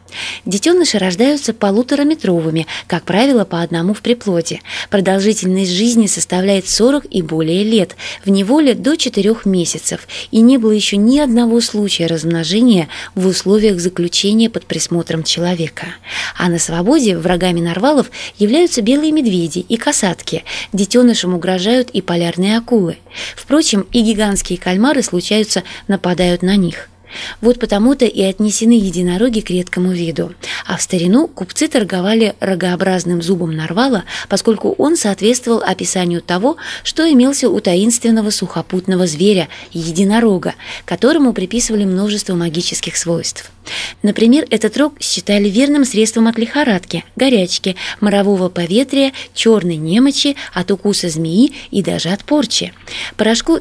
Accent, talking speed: native, 125 wpm